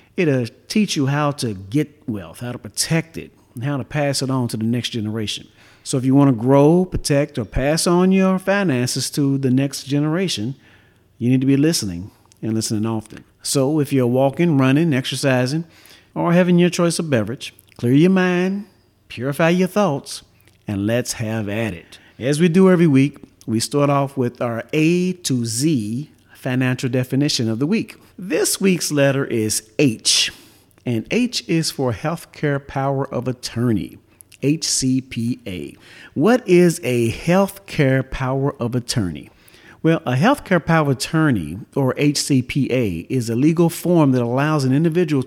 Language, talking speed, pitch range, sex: English, 160 wpm, 120-155 Hz, male